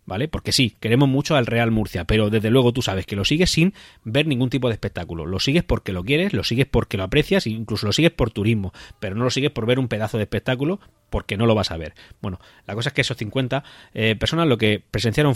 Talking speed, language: 255 wpm, Spanish